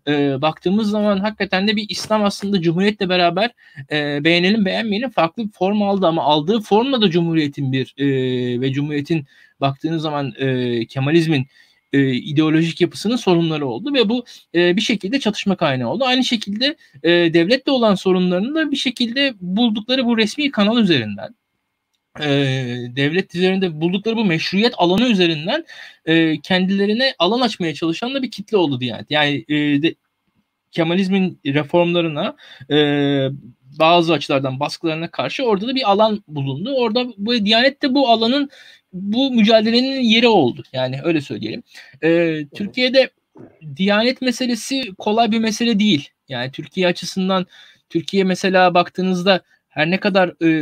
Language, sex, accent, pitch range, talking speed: Turkish, male, native, 155-220 Hz, 145 wpm